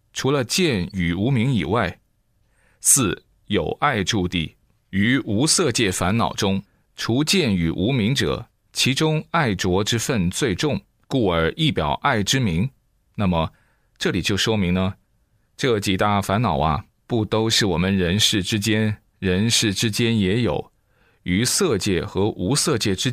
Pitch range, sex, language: 95-125 Hz, male, Chinese